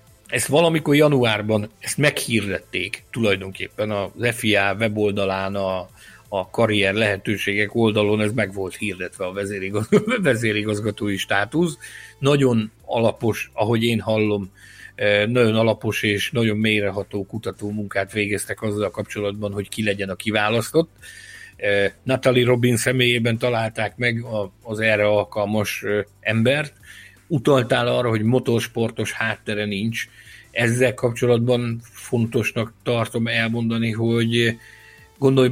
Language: Hungarian